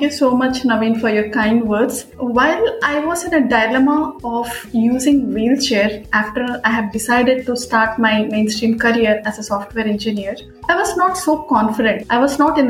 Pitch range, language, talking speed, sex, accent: 225-280 Hz, English, 190 wpm, female, Indian